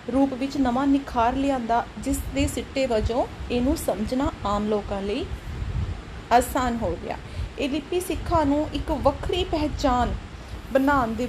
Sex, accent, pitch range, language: female, native, 230-285 Hz, Hindi